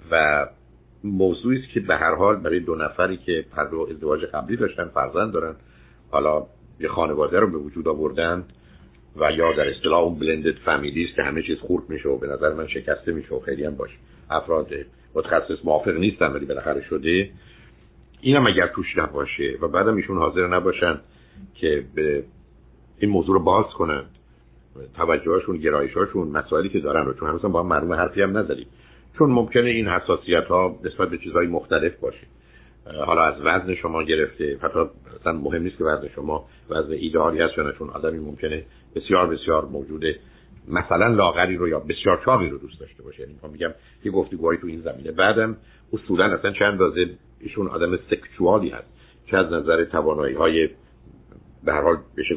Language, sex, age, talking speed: Persian, male, 60-79, 170 wpm